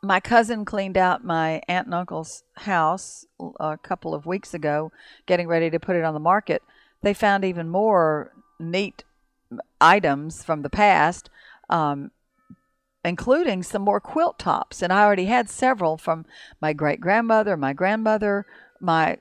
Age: 50-69